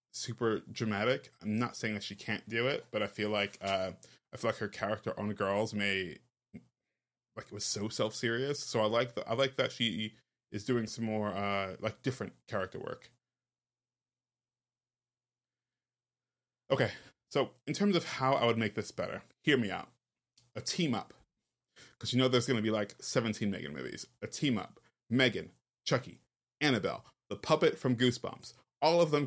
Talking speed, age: 175 wpm, 20-39